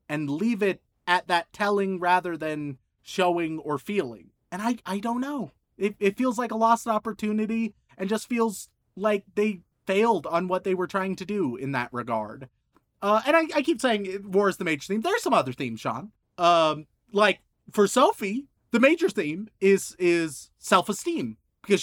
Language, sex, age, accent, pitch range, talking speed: English, male, 30-49, American, 160-220 Hz, 180 wpm